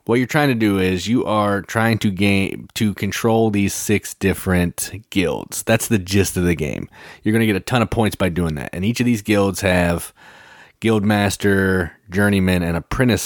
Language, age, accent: English, 30-49, American